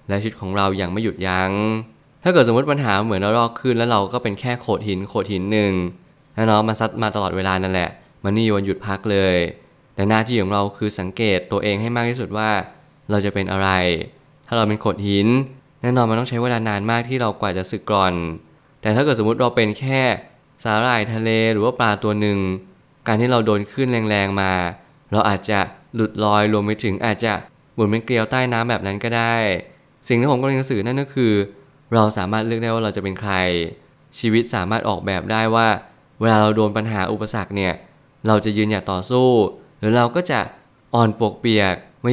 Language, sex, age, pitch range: Thai, male, 20-39, 100-120 Hz